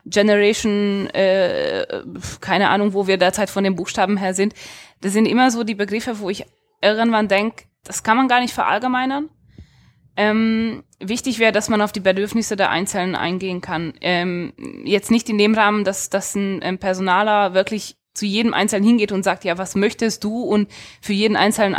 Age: 20-39